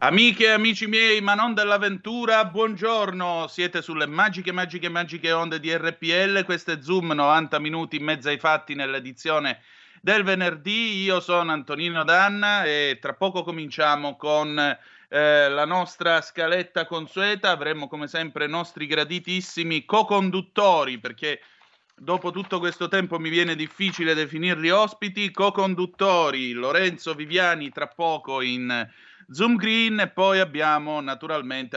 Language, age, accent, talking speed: Italian, 30-49, native, 135 wpm